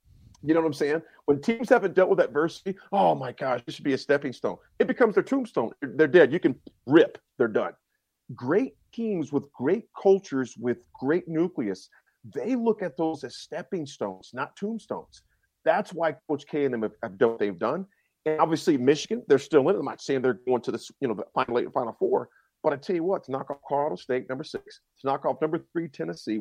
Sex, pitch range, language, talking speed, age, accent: male, 125-195 Hz, English, 225 wpm, 40-59, American